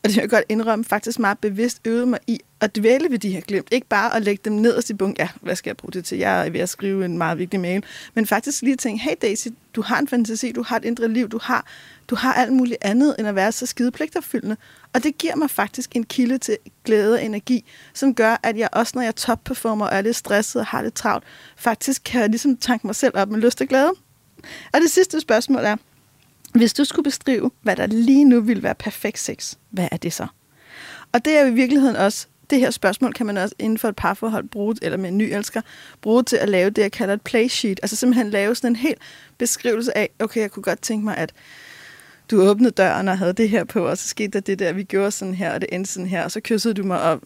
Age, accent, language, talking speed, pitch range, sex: 30-49, native, Danish, 260 wpm, 200-245 Hz, female